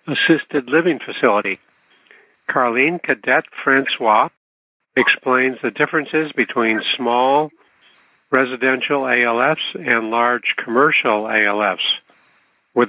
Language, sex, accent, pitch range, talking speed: English, male, American, 115-140 Hz, 85 wpm